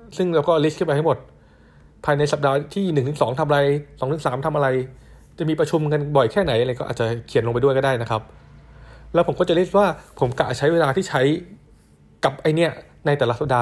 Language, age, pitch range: Thai, 20-39, 115-150 Hz